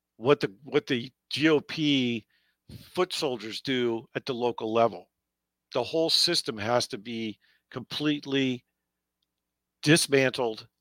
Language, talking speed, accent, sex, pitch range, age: English, 110 wpm, American, male, 85-135 Hz, 50-69